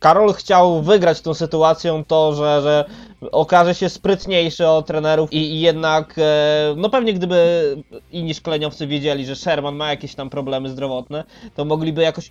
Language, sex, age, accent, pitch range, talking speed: Polish, male, 20-39, native, 155-185 Hz, 155 wpm